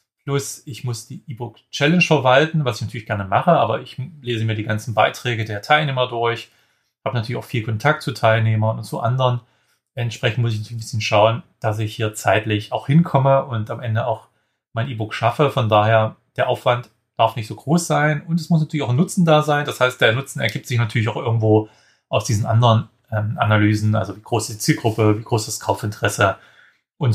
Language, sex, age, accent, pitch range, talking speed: German, male, 30-49, German, 110-140 Hz, 205 wpm